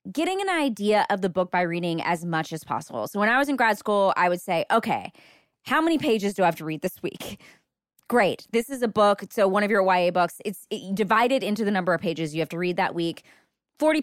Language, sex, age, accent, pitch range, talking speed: English, female, 20-39, American, 180-255 Hz, 250 wpm